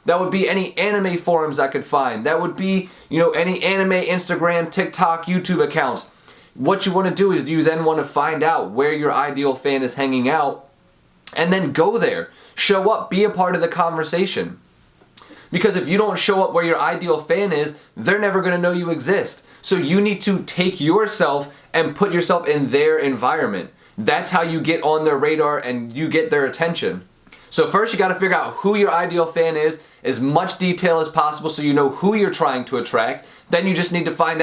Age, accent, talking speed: 20-39, American, 210 wpm